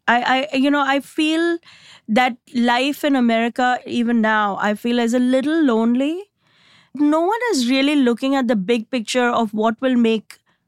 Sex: female